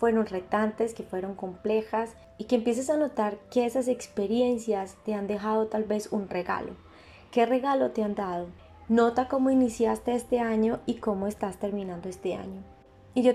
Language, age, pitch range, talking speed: Spanish, 20-39, 200-230 Hz, 170 wpm